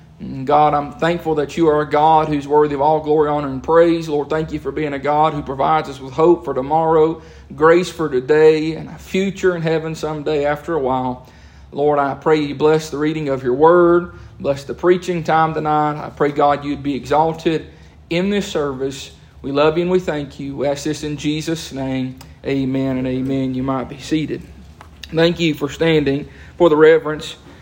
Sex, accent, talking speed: male, American, 200 wpm